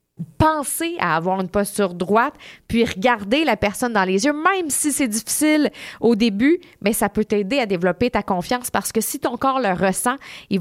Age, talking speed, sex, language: 30-49, 200 wpm, female, French